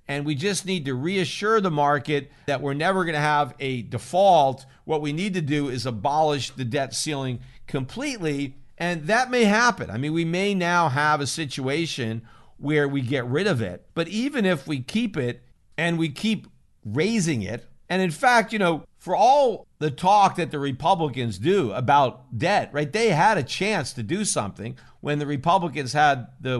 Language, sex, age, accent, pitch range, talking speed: English, male, 50-69, American, 130-175 Hz, 190 wpm